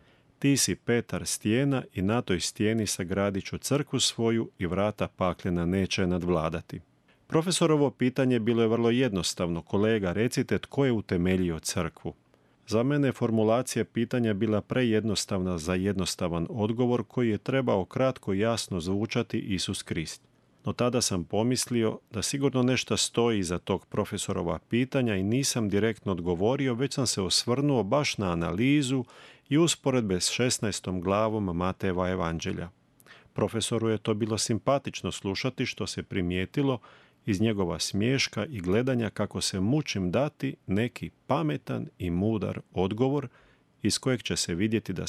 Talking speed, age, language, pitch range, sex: 140 wpm, 40-59, Croatian, 95-125 Hz, male